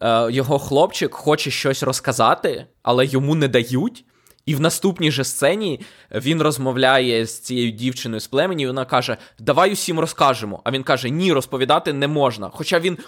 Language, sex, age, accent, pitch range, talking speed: Ukrainian, male, 20-39, native, 130-185 Hz, 165 wpm